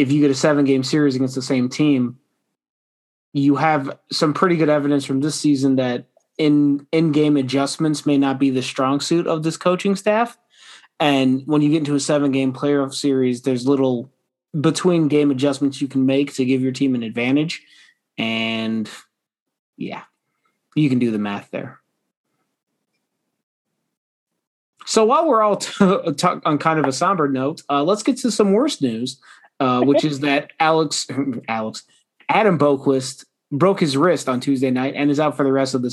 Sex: male